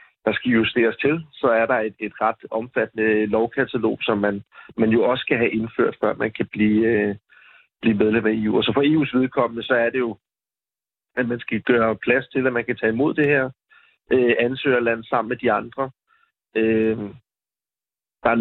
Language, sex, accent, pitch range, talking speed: Danish, male, native, 110-125 Hz, 195 wpm